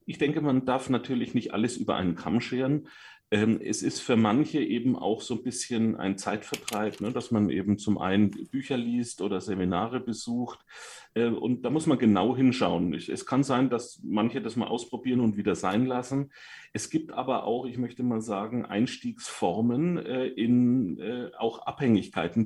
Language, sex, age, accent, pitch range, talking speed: German, male, 40-59, German, 100-125 Hz, 165 wpm